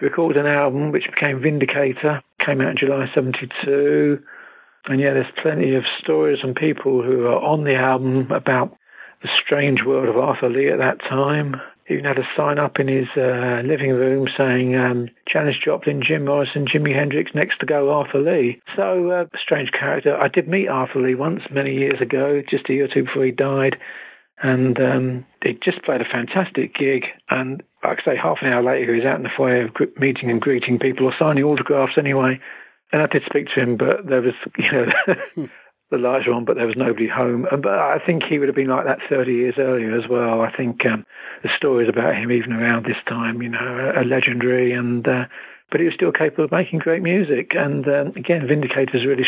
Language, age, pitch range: English, 50-69, 125-145 Hz